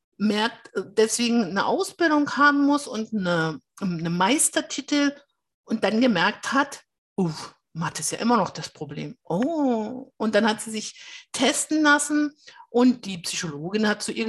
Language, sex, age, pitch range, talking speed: German, female, 50-69, 195-280 Hz, 150 wpm